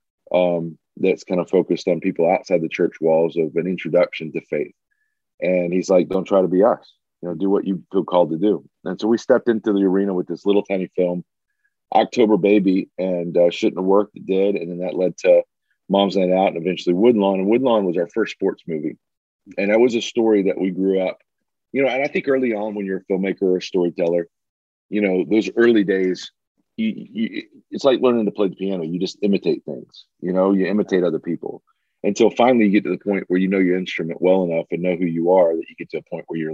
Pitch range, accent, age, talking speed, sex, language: 90-105 Hz, American, 40-59, 240 wpm, male, English